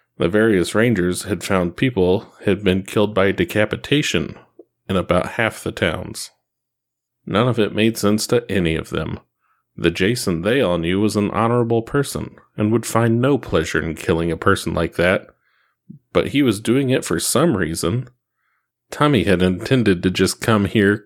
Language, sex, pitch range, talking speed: English, male, 95-110 Hz, 170 wpm